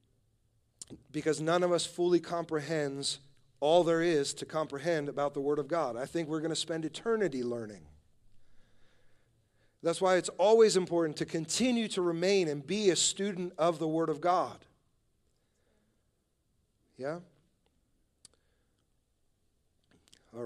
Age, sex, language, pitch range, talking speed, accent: 40-59, male, English, 120-170 Hz, 130 wpm, American